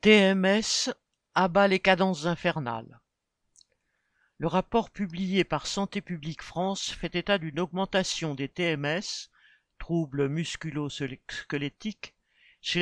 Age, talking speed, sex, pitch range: 50-69, 100 wpm, male, 155-200 Hz